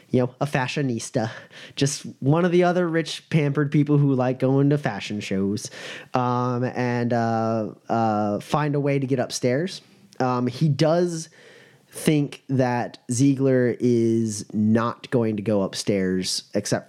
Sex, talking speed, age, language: male, 145 wpm, 30-49, English